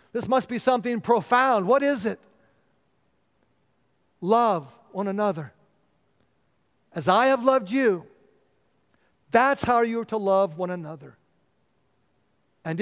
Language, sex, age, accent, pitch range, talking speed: English, male, 50-69, American, 195-245 Hz, 115 wpm